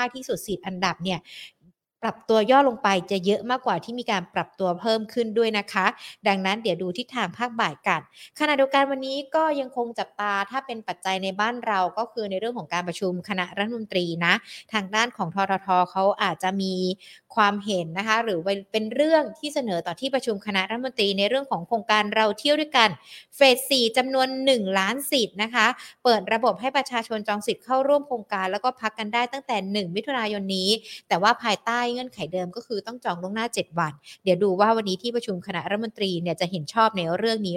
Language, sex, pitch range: Thai, female, 190-245 Hz